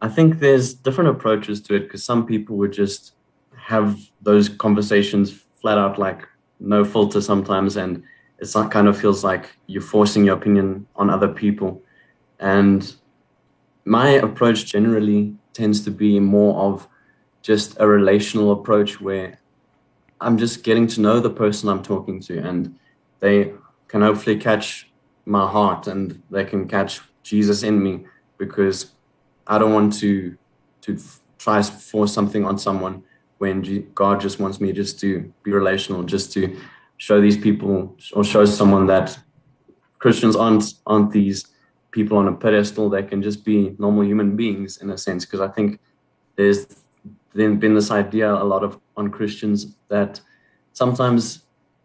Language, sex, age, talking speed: English, male, 20-39, 155 wpm